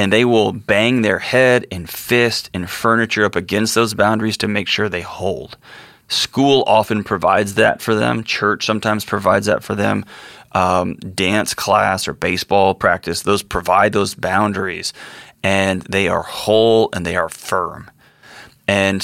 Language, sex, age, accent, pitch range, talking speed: English, male, 30-49, American, 95-110 Hz, 160 wpm